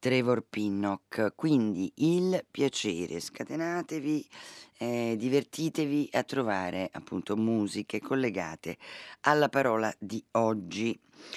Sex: female